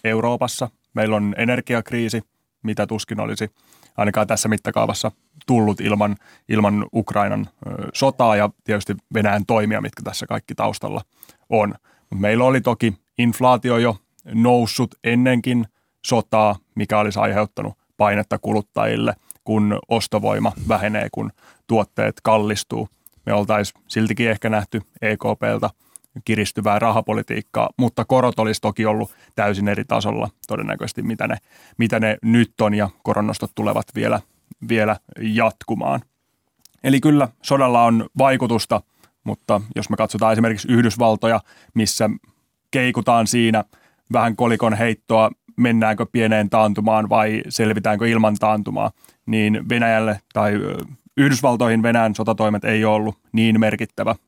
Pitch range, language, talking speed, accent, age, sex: 105-115 Hz, Finnish, 120 wpm, native, 30-49, male